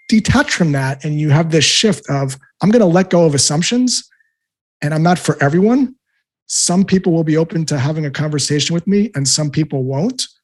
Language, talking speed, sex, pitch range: English, 205 wpm, male, 150-200 Hz